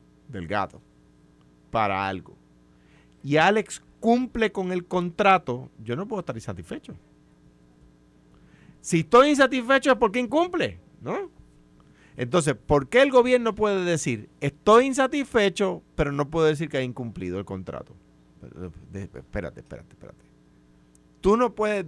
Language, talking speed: Spanish, 130 wpm